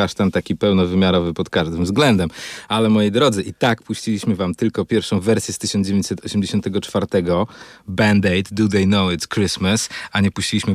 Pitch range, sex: 95-115 Hz, male